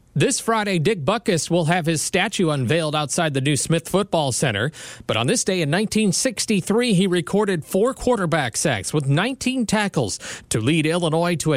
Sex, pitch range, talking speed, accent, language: male, 150-200 Hz, 175 wpm, American, English